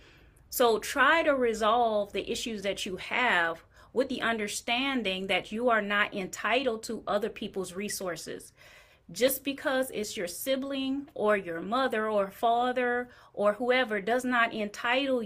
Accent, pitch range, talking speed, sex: American, 185-240 Hz, 140 wpm, female